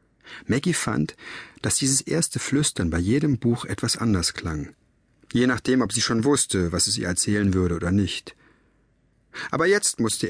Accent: German